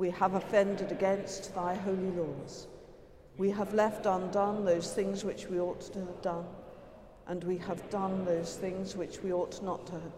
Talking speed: 185 wpm